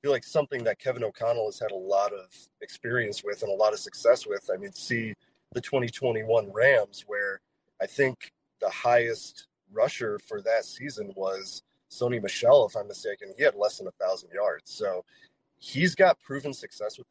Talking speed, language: 185 wpm, English